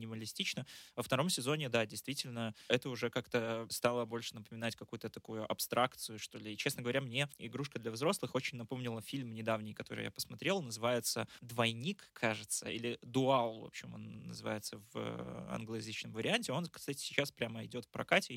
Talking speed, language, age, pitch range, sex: 160 wpm, Russian, 20-39, 110-130 Hz, male